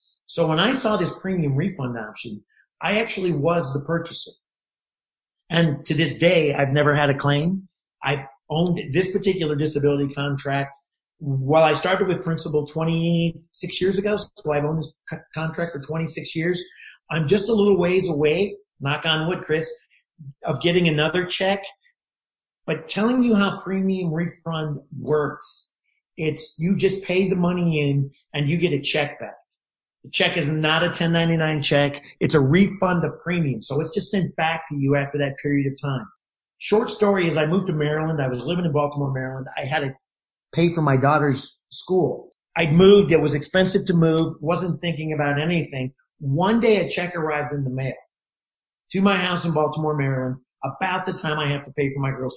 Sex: male